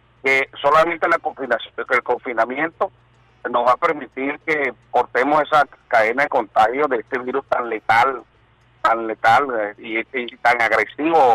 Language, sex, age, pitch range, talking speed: Spanish, male, 50-69, 120-160 Hz, 155 wpm